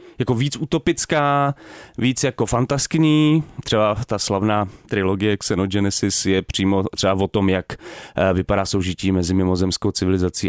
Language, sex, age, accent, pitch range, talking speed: Czech, male, 30-49, native, 95-120 Hz, 125 wpm